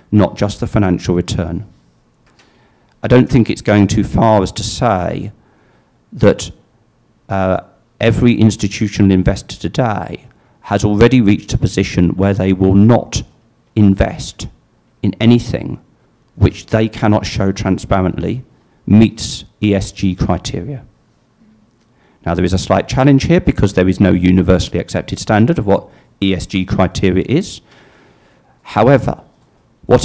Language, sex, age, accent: Portuguese, male, 50-69, British